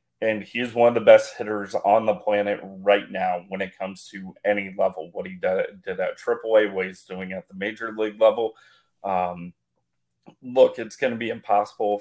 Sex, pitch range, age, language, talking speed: male, 95-110 Hz, 30-49, English, 190 wpm